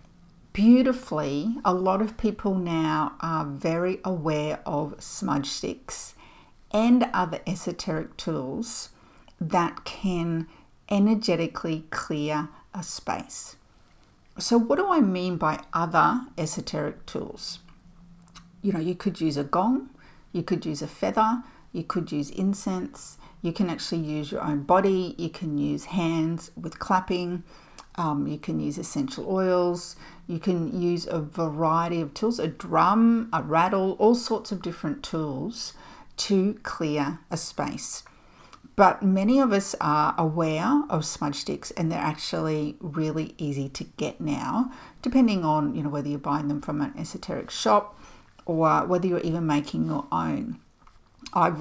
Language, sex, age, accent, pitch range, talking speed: English, female, 50-69, Australian, 155-195 Hz, 145 wpm